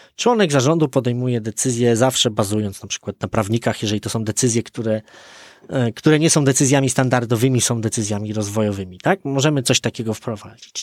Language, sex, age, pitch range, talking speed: Polish, male, 20-39, 120-170 Hz, 155 wpm